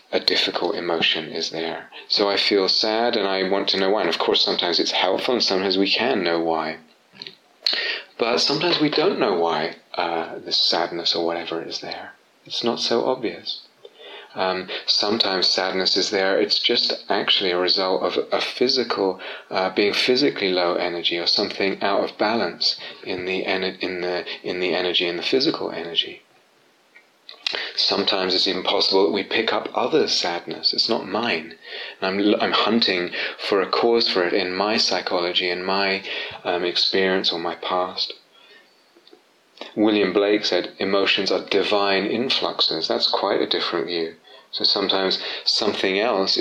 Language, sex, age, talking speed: English, male, 30-49, 165 wpm